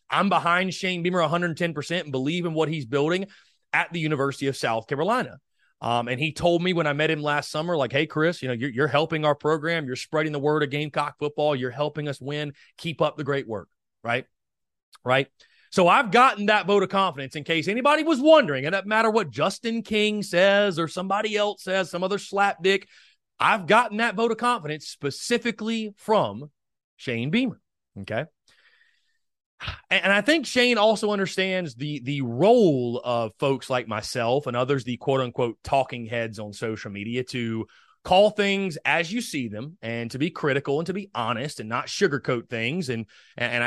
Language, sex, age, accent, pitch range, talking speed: English, male, 30-49, American, 135-195 Hz, 190 wpm